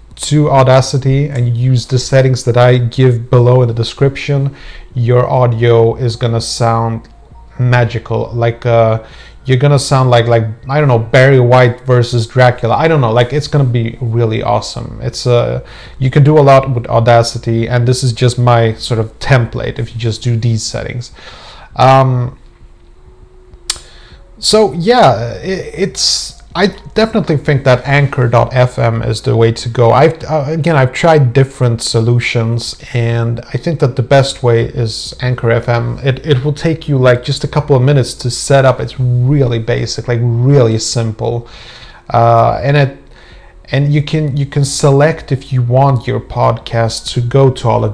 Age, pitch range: 30-49, 115-135 Hz